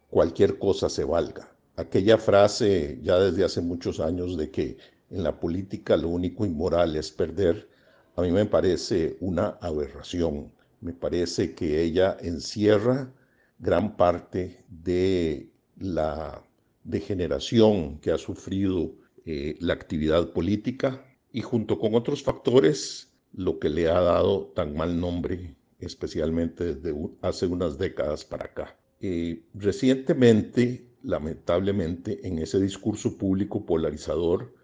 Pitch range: 90-125 Hz